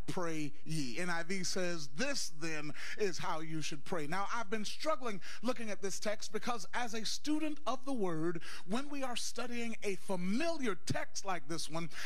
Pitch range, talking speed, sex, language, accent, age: 200-265 Hz, 180 wpm, male, English, American, 30-49